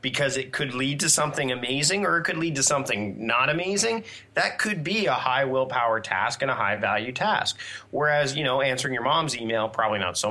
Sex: male